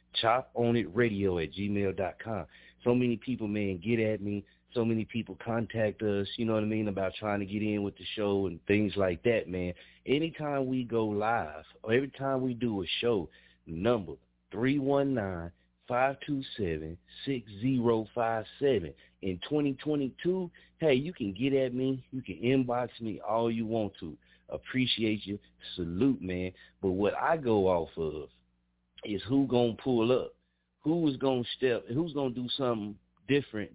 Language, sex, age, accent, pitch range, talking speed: English, male, 30-49, American, 90-130 Hz, 160 wpm